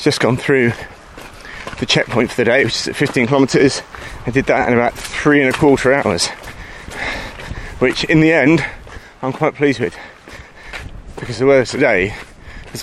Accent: British